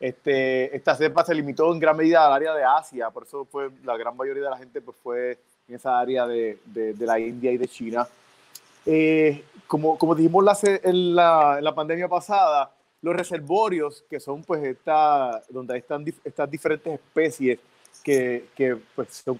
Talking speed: 190 wpm